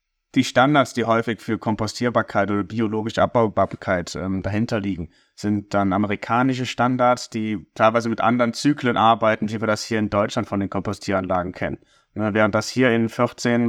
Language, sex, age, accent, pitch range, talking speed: German, male, 30-49, German, 100-120 Hz, 160 wpm